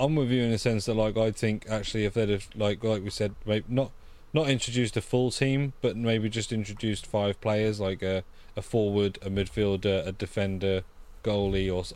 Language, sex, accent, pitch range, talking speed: English, male, British, 95-110 Hz, 205 wpm